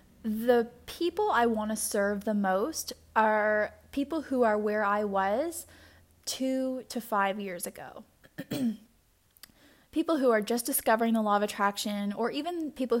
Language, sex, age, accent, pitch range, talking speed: English, female, 10-29, American, 200-235 Hz, 150 wpm